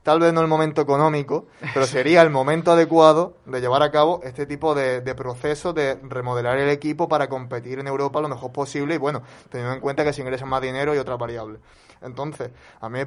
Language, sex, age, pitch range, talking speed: Spanish, male, 20-39, 130-150 Hz, 220 wpm